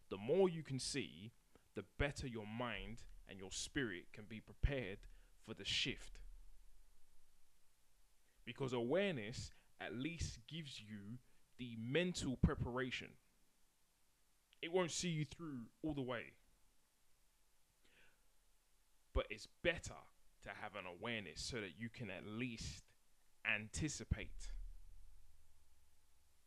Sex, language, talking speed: male, English, 110 wpm